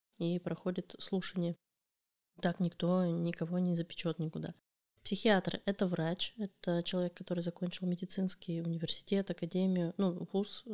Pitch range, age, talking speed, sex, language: 170-190 Hz, 20-39, 115 wpm, female, Russian